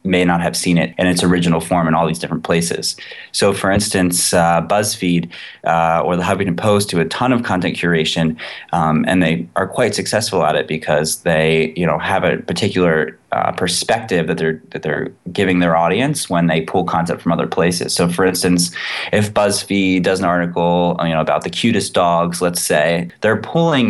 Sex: male